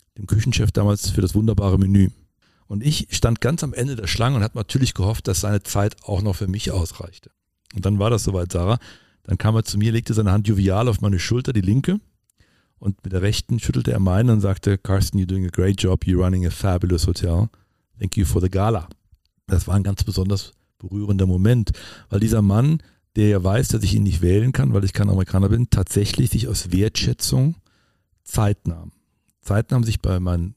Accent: German